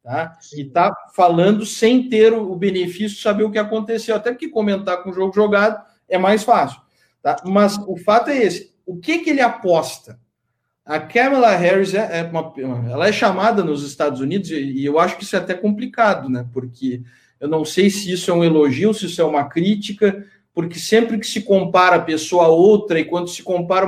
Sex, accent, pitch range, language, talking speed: male, Brazilian, 160-210 Hz, Portuguese, 205 wpm